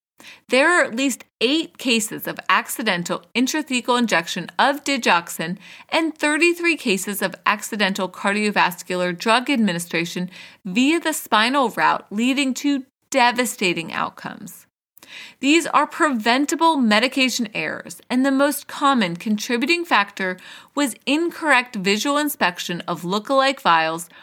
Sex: female